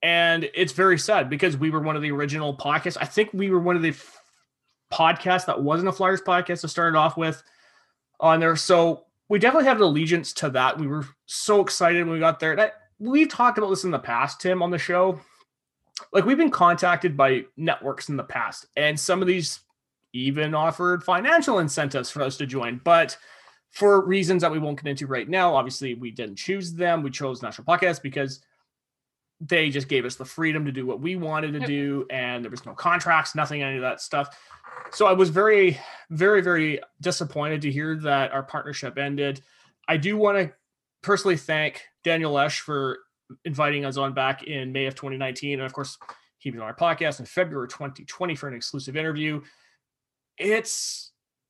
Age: 20-39